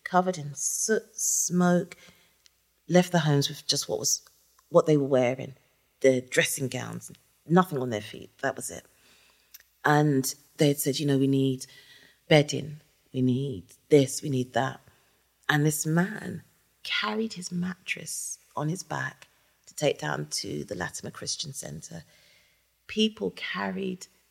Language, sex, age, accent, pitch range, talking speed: English, female, 40-59, British, 145-185 Hz, 145 wpm